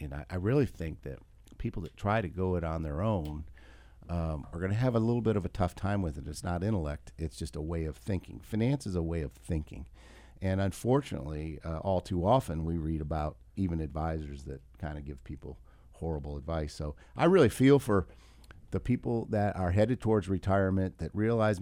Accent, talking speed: American, 210 wpm